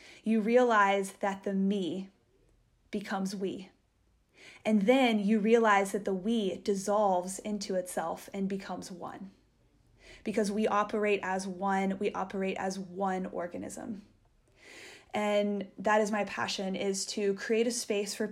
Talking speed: 135 wpm